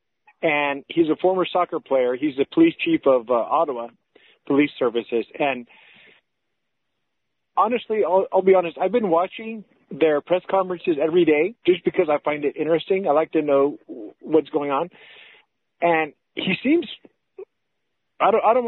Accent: American